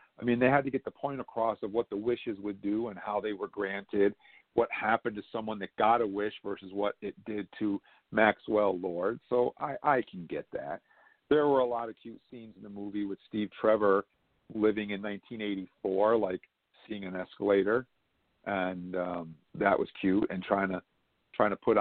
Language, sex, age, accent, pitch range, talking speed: English, male, 50-69, American, 105-145 Hz, 200 wpm